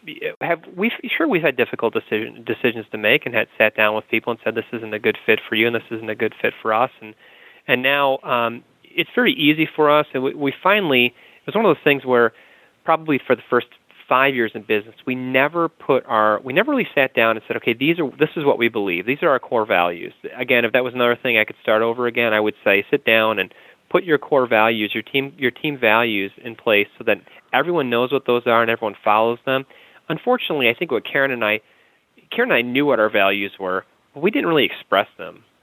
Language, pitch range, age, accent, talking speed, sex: English, 110-135 Hz, 30-49, American, 245 wpm, male